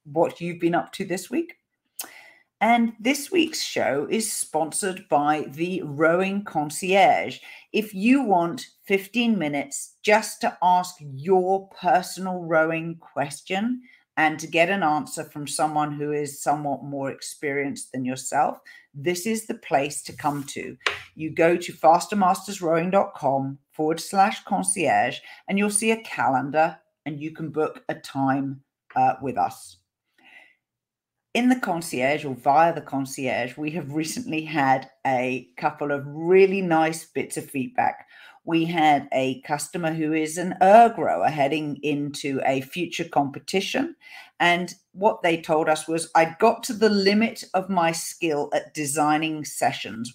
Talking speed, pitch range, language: 145 wpm, 145-185 Hz, English